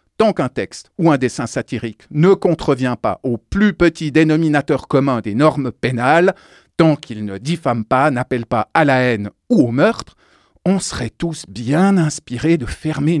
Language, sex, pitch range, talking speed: French, male, 125-195 Hz, 175 wpm